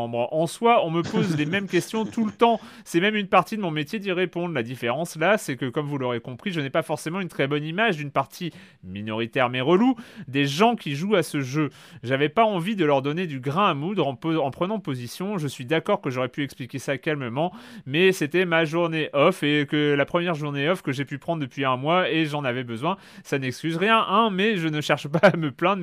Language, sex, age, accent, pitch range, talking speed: French, male, 30-49, French, 140-190 Hz, 250 wpm